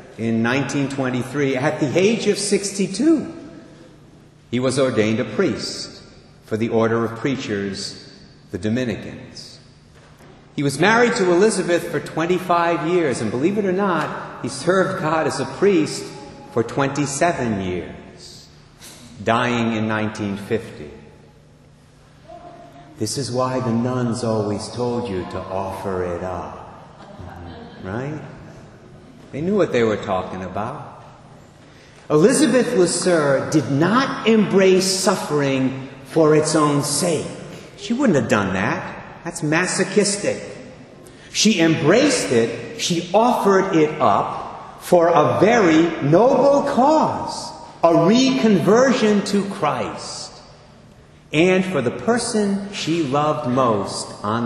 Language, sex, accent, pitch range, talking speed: English, male, American, 120-185 Hz, 115 wpm